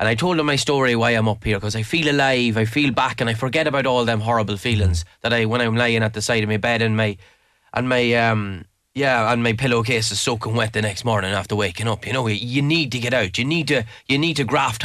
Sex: male